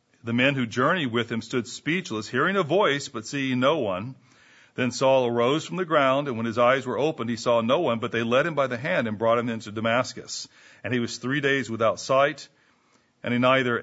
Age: 40-59